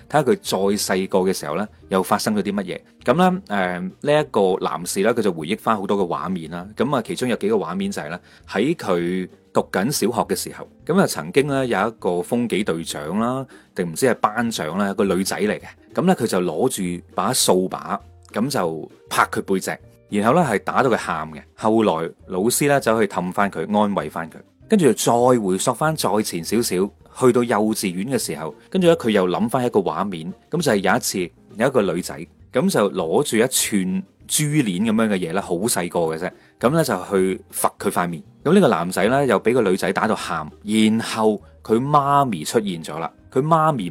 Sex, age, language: male, 30-49, Chinese